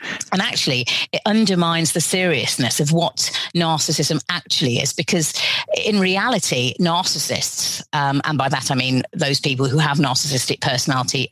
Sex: female